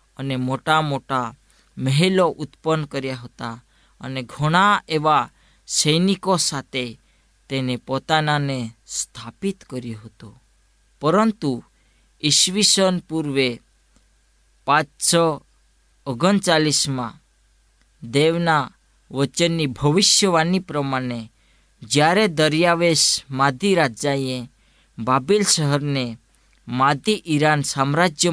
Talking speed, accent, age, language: 65 wpm, native, 20-39, Gujarati